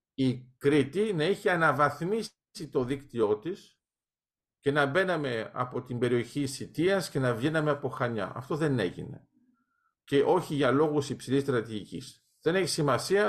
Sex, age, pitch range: male, 50-69, 135-180 Hz